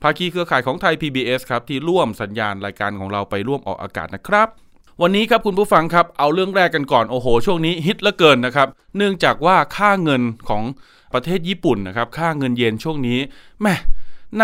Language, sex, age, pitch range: Thai, male, 20-39, 120-165 Hz